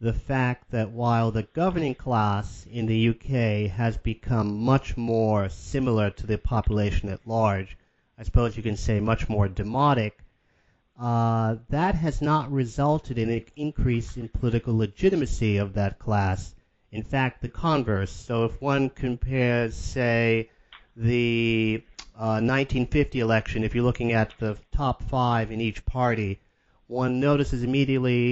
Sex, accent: male, American